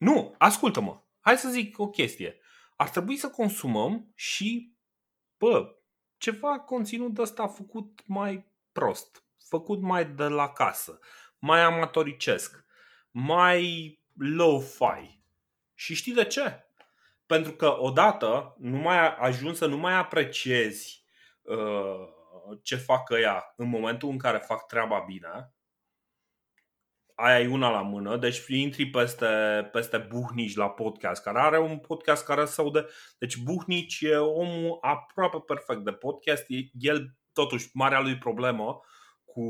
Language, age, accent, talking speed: Romanian, 30-49, native, 135 wpm